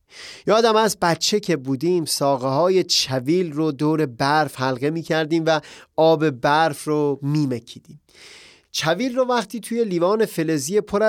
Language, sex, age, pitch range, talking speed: Persian, male, 30-49, 140-185 Hz, 140 wpm